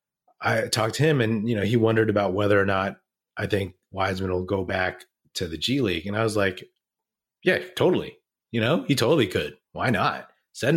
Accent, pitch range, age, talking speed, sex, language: American, 100-125 Hz, 30-49, 205 wpm, male, English